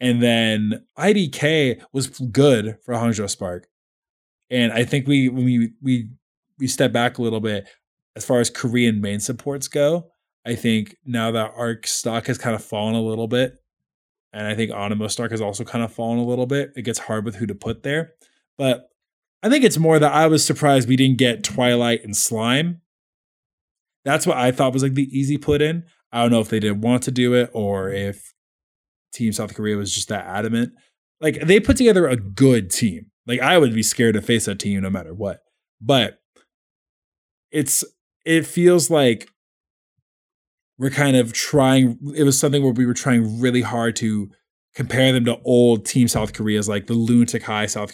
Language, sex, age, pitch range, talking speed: English, male, 20-39, 105-130 Hz, 195 wpm